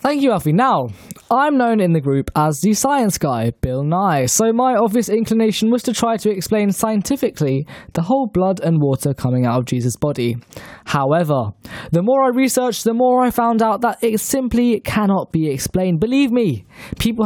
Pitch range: 150-225 Hz